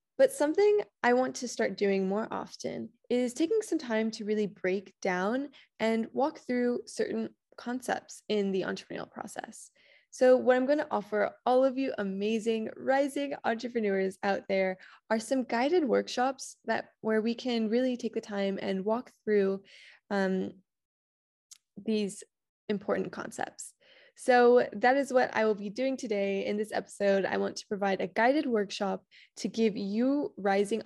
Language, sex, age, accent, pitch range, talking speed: English, female, 20-39, American, 200-250 Hz, 160 wpm